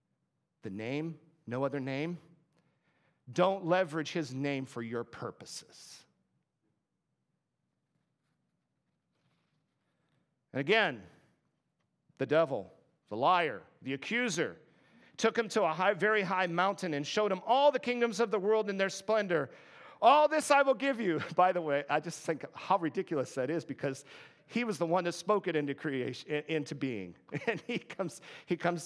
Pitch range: 130-195 Hz